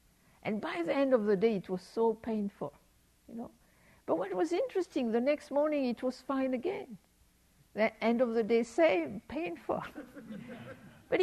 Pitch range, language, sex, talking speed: 220-325 Hz, English, female, 170 wpm